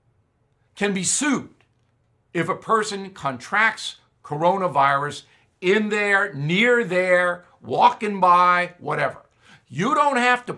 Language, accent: English, American